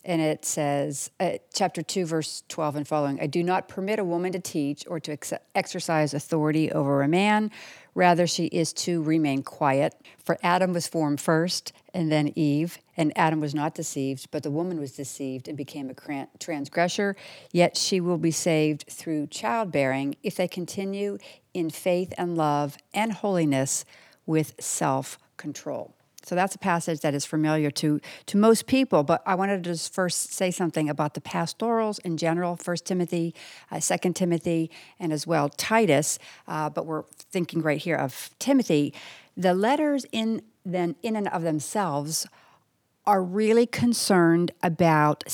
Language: English